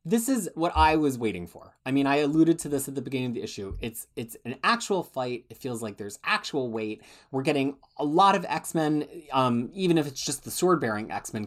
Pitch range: 115-155 Hz